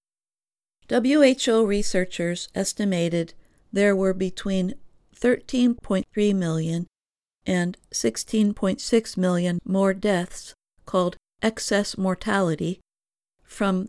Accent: American